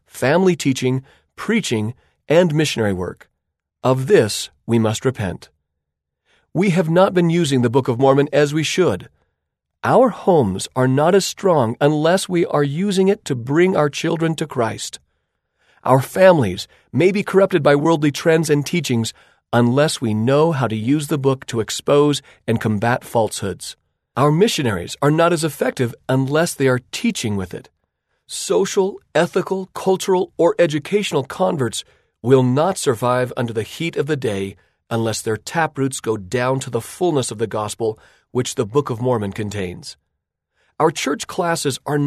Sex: male